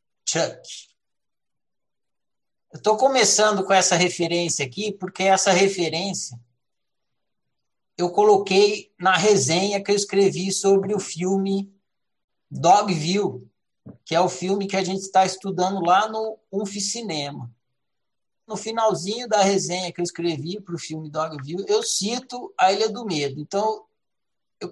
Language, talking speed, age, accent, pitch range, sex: Portuguese, 130 wpm, 60-79, Brazilian, 160-205 Hz, male